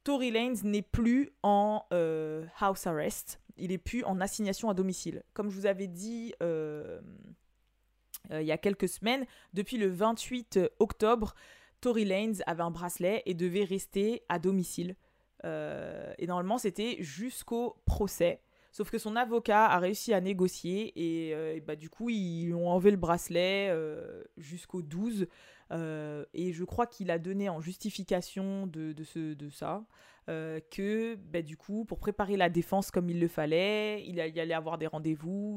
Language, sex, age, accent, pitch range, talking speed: French, female, 20-39, French, 165-210 Hz, 170 wpm